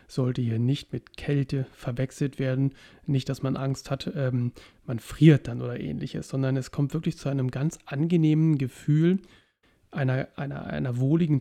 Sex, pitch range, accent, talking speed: male, 125-150 Hz, German, 165 wpm